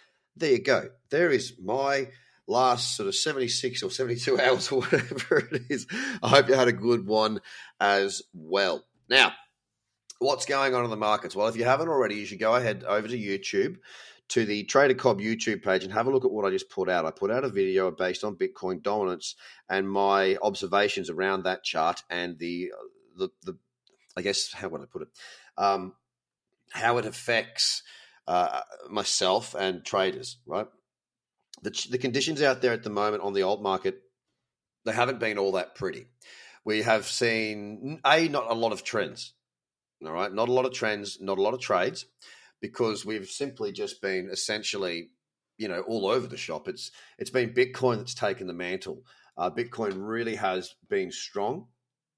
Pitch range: 100-135 Hz